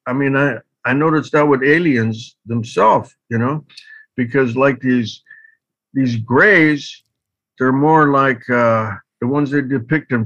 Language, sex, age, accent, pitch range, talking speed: English, male, 60-79, American, 115-155 Hz, 145 wpm